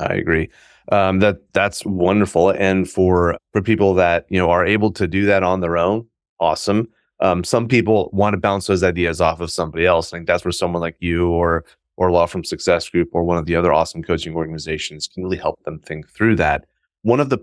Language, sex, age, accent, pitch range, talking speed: English, male, 30-49, American, 85-105 Hz, 225 wpm